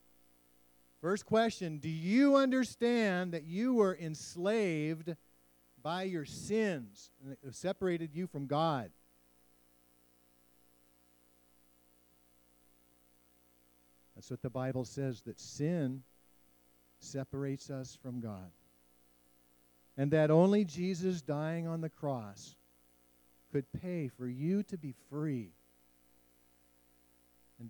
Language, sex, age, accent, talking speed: English, male, 50-69, American, 95 wpm